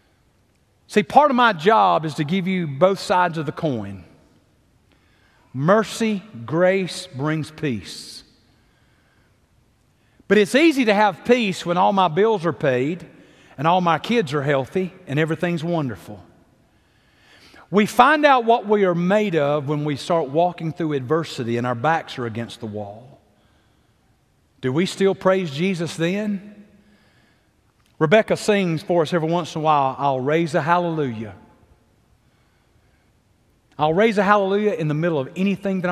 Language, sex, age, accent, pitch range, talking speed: English, male, 40-59, American, 150-215 Hz, 150 wpm